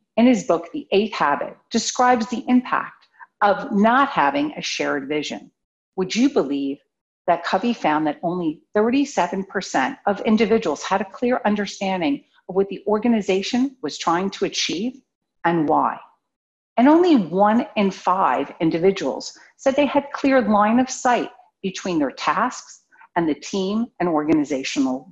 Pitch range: 180-270 Hz